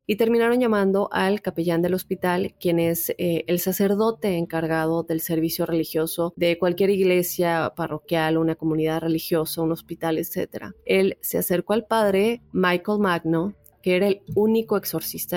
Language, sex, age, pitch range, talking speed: Spanish, female, 20-39, 165-200 Hz, 150 wpm